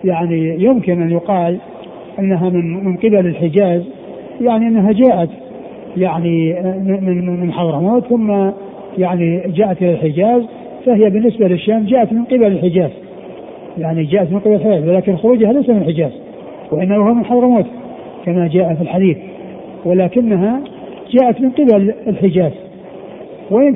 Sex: male